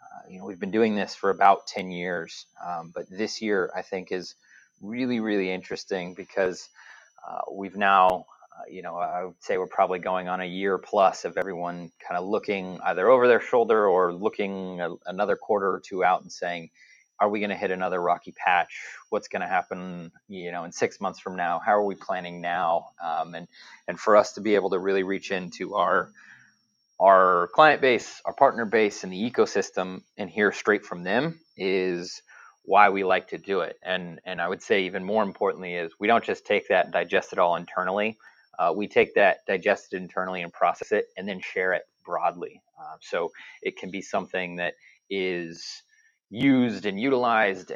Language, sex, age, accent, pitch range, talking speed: English, male, 30-49, American, 90-110 Hz, 200 wpm